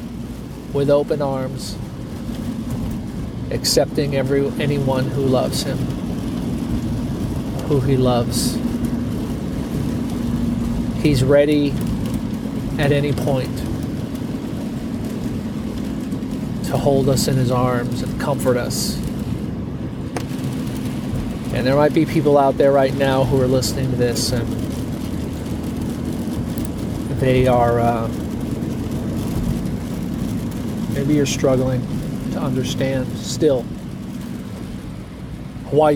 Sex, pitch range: male, 125-140 Hz